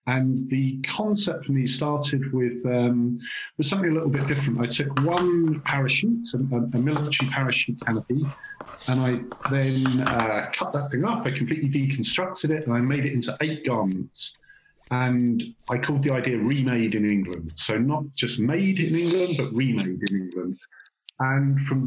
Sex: male